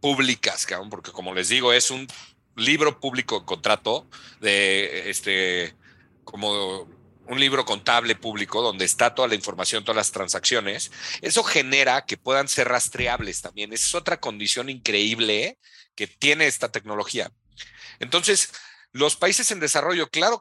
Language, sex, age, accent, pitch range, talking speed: Spanish, male, 40-59, Mexican, 105-140 Hz, 135 wpm